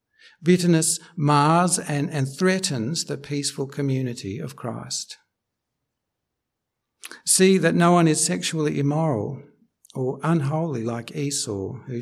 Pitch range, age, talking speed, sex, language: 125-180 Hz, 60-79, 110 wpm, male, English